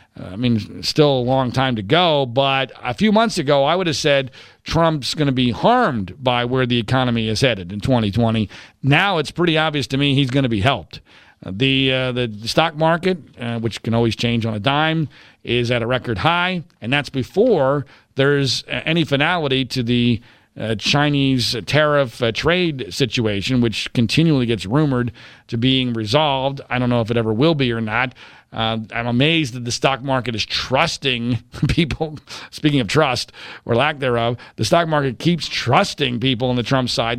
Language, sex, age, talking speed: English, male, 40-59, 185 wpm